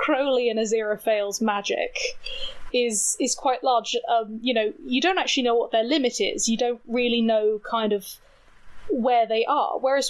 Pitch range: 225-290 Hz